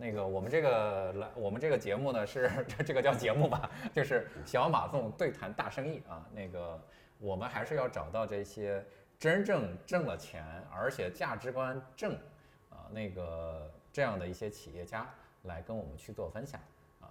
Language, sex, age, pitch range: Chinese, male, 20-39, 90-130 Hz